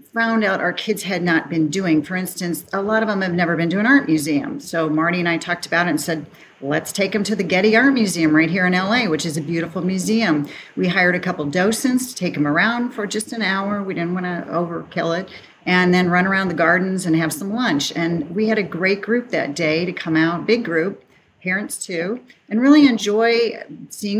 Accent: American